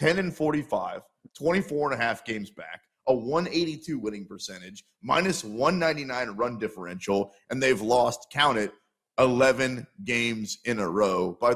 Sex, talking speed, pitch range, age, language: male, 145 wpm, 110-145 Hz, 30-49, English